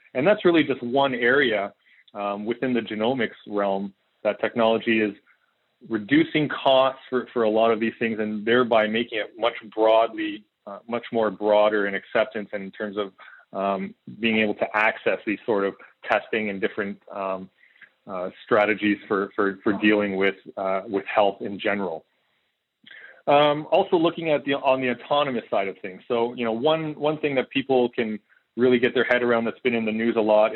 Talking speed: 185 wpm